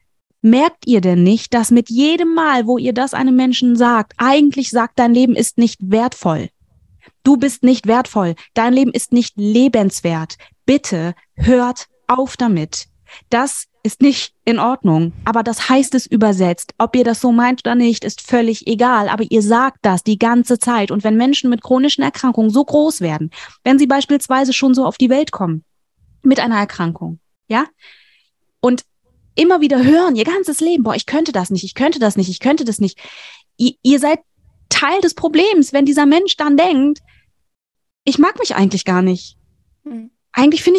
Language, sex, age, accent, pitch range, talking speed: German, female, 20-39, German, 220-280 Hz, 180 wpm